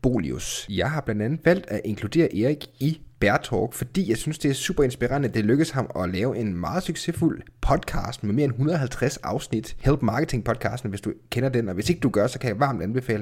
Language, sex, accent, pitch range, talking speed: Danish, male, native, 110-145 Hz, 225 wpm